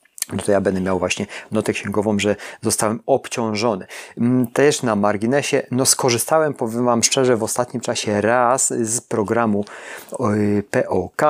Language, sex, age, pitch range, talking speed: Polish, male, 30-49, 110-125 Hz, 135 wpm